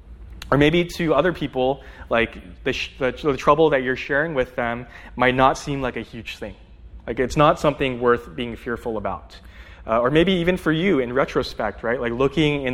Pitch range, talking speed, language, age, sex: 95-135 Hz, 200 wpm, English, 20-39, male